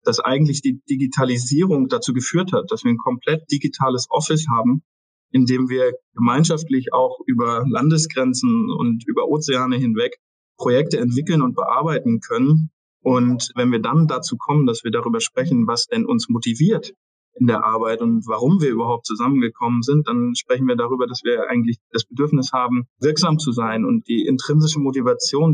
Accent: German